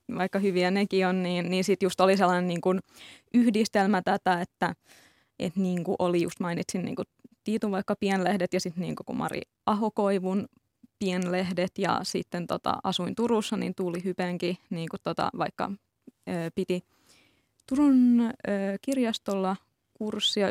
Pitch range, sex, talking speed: 175-205 Hz, female, 140 wpm